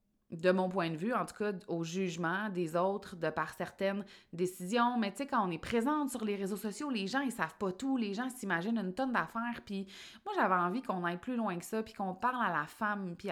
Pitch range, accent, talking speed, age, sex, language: 195-235 Hz, Canadian, 255 wpm, 30-49, female, French